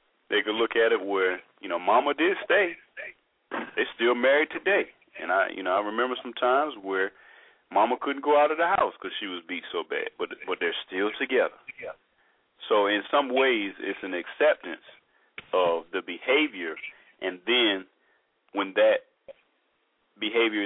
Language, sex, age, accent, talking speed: English, male, 40-59, American, 165 wpm